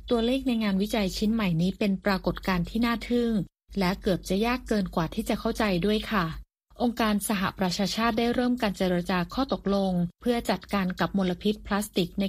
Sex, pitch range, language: female, 185-230 Hz, Thai